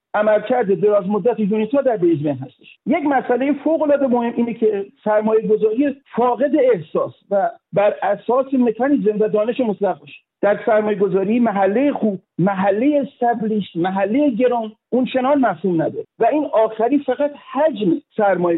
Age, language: 50-69, Persian